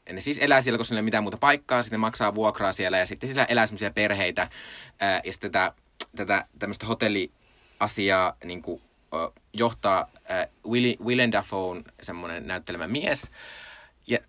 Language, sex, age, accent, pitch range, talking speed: Finnish, male, 20-39, native, 100-125 Hz, 175 wpm